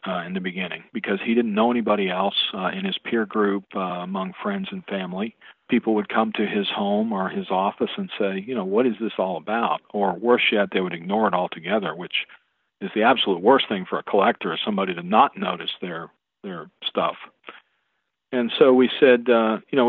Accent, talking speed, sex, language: American, 210 wpm, male, English